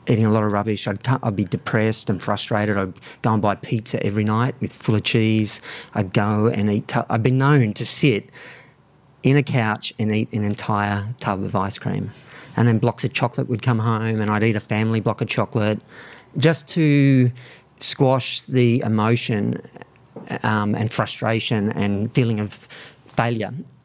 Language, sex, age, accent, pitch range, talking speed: English, male, 40-59, Australian, 110-130 Hz, 180 wpm